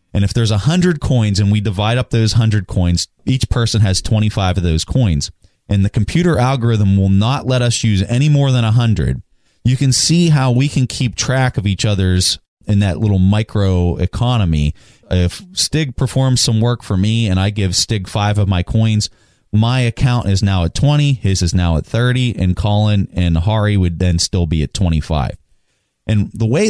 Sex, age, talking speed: male, 30-49, 200 wpm